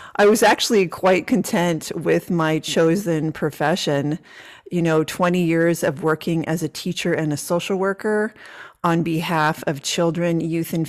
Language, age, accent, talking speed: English, 30-49, American, 155 wpm